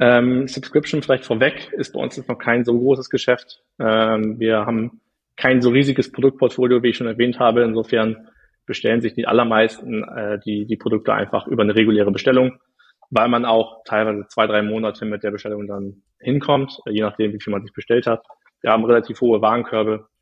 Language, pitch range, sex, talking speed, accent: German, 110-130 Hz, male, 190 wpm, German